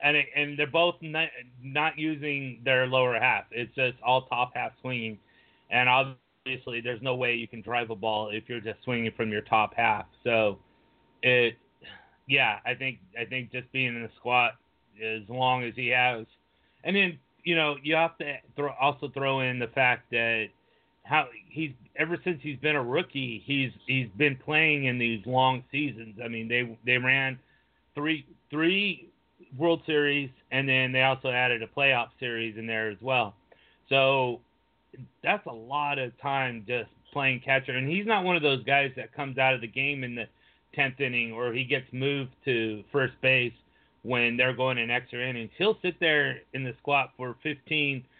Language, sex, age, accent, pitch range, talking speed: English, male, 30-49, American, 120-145 Hz, 185 wpm